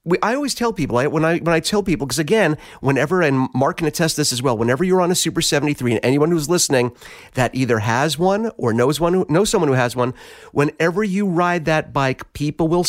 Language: English